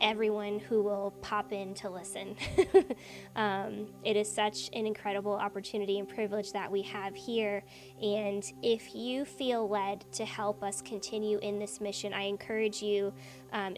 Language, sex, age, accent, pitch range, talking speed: English, female, 20-39, American, 200-225 Hz, 155 wpm